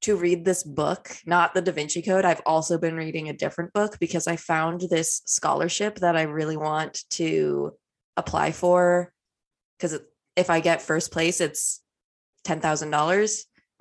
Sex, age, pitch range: female, 20-39, 160-185 Hz